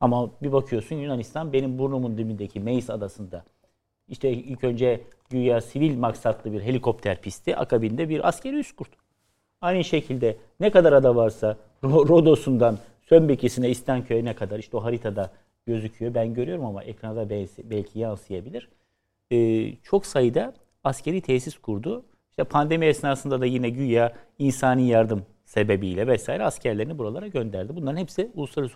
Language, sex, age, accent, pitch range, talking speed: Turkish, male, 50-69, native, 110-150 Hz, 135 wpm